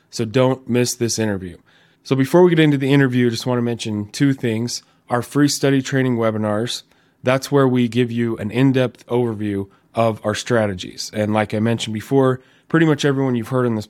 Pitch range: 110-130 Hz